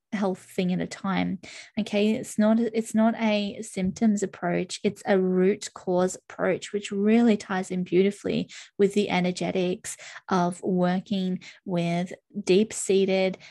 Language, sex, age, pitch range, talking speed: English, female, 20-39, 185-215 Hz, 140 wpm